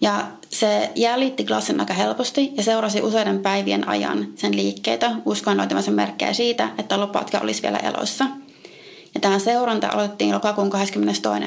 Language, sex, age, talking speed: Finnish, female, 30-49, 135 wpm